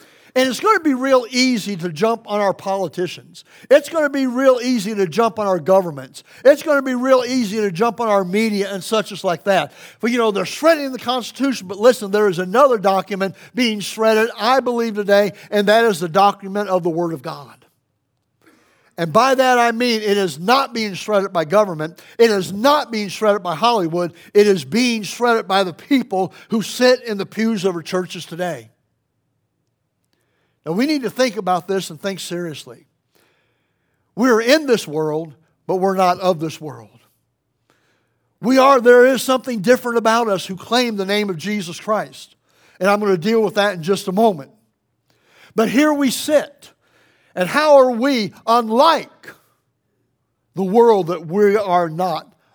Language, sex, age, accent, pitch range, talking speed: English, male, 60-79, American, 175-235 Hz, 185 wpm